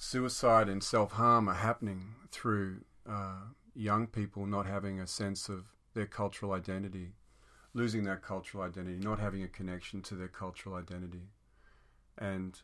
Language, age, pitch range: English, 40-59, 95-105 Hz